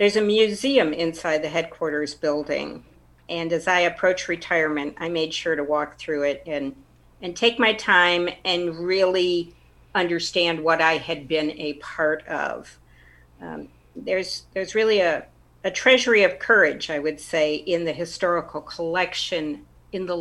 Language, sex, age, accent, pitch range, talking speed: English, female, 50-69, American, 150-185 Hz, 155 wpm